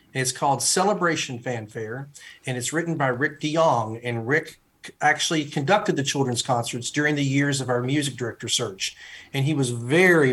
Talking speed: 170 wpm